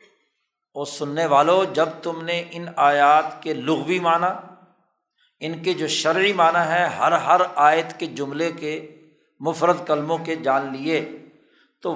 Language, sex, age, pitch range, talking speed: Urdu, male, 60-79, 150-185 Hz, 145 wpm